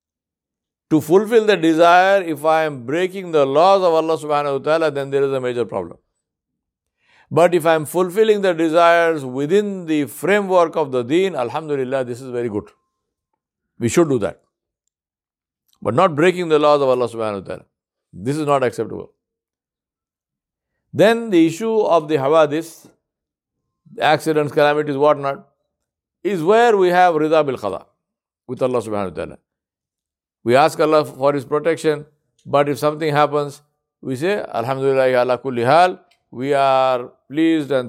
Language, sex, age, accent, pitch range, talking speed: English, male, 60-79, Indian, 125-165 Hz, 150 wpm